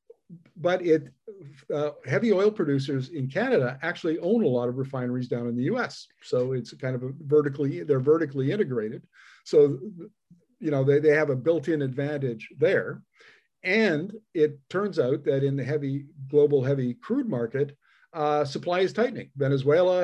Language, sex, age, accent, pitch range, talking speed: English, male, 50-69, American, 135-175 Hz, 160 wpm